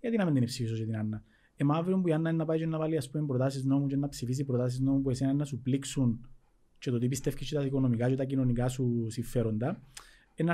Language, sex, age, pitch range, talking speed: Greek, male, 30-49, 120-170 Hz, 250 wpm